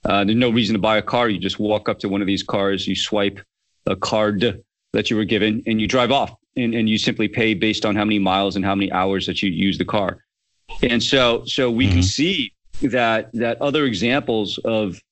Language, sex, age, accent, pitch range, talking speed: English, male, 40-59, American, 100-115 Hz, 235 wpm